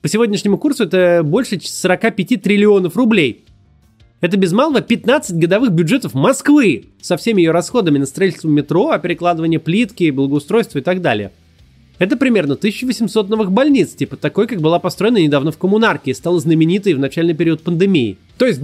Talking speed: 165 wpm